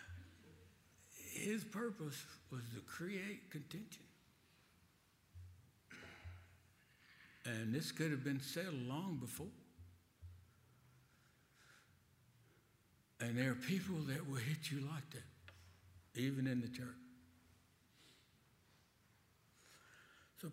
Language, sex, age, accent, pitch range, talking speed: English, male, 60-79, American, 105-140 Hz, 85 wpm